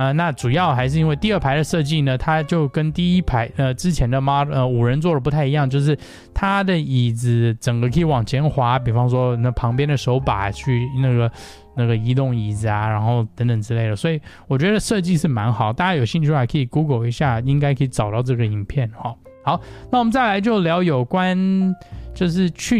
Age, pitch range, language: 20-39, 120-165 Hz, Chinese